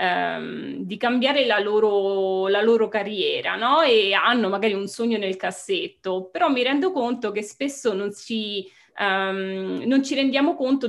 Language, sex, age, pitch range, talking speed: Italian, female, 20-39, 190-240 Hz, 130 wpm